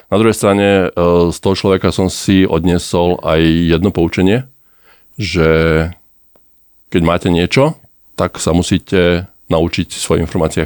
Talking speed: 125 wpm